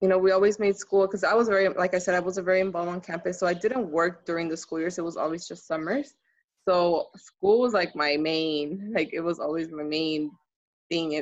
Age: 20-39